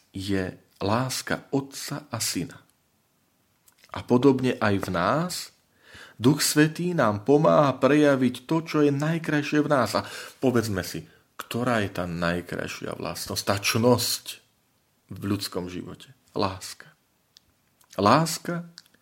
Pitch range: 95-125 Hz